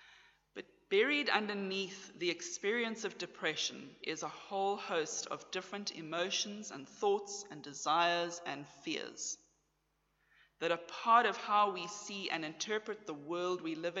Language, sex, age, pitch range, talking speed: English, female, 30-49, 155-210 Hz, 135 wpm